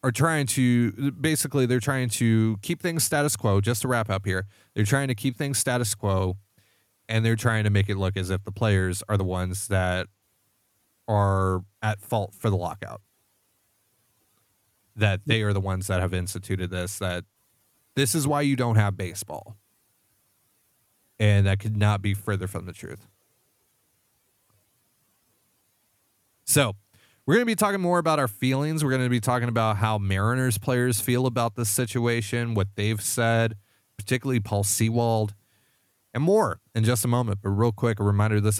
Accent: American